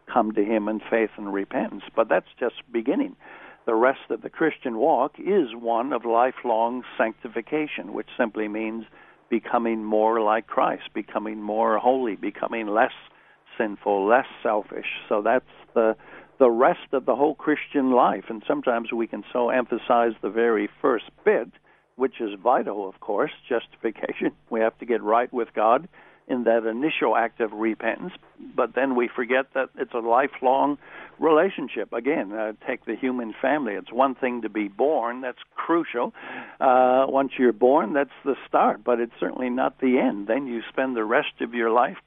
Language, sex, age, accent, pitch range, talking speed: English, male, 60-79, American, 115-130 Hz, 170 wpm